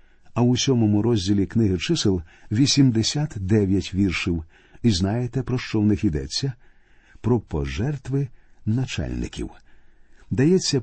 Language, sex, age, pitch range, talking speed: Ukrainian, male, 50-69, 95-125 Hz, 105 wpm